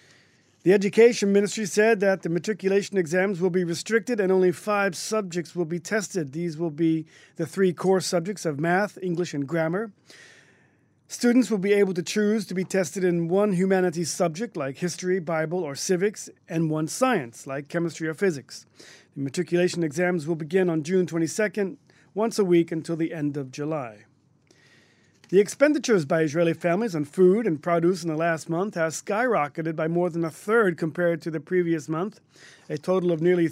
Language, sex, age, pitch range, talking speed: English, male, 40-59, 160-200 Hz, 180 wpm